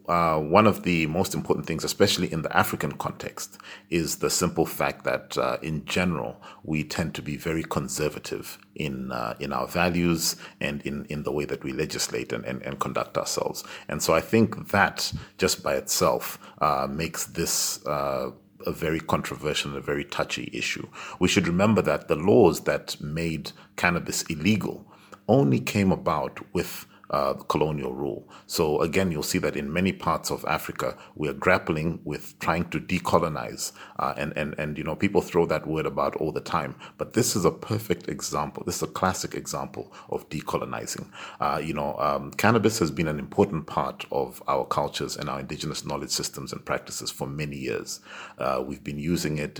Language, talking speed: English, 185 wpm